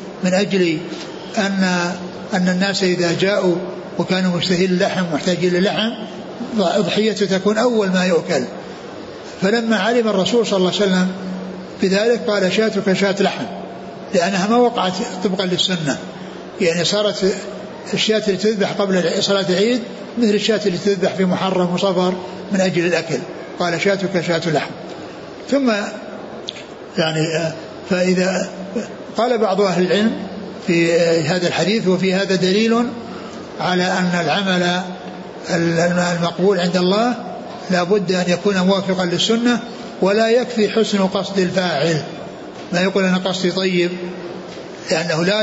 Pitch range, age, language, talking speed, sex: 180-210 Hz, 60-79, Arabic, 120 wpm, male